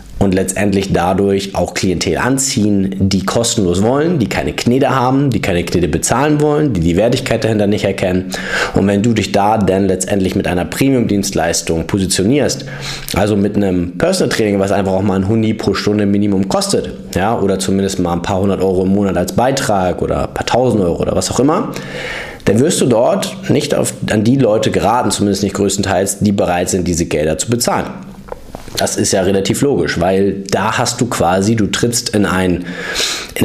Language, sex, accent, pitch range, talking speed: German, male, German, 95-110 Hz, 185 wpm